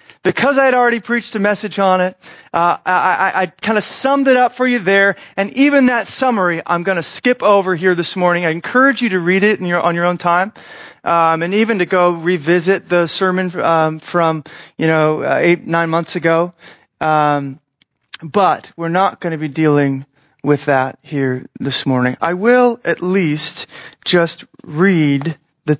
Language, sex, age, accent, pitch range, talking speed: English, male, 30-49, American, 155-200 Hz, 190 wpm